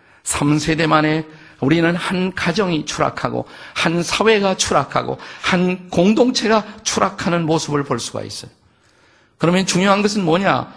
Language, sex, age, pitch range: Korean, male, 50-69, 110-180 Hz